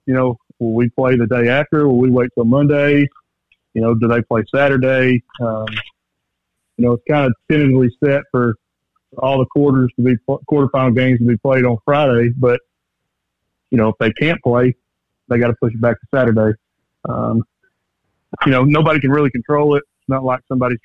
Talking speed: 195 wpm